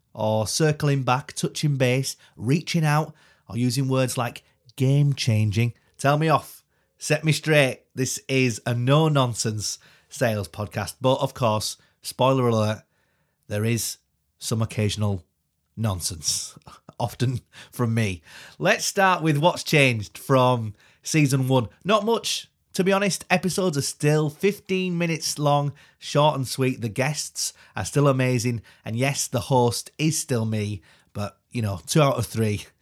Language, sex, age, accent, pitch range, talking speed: English, male, 30-49, British, 115-150 Hz, 145 wpm